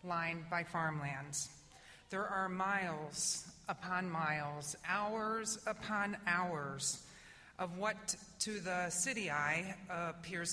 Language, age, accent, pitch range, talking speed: English, 40-59, American, 165-220 Hz, 105 wpm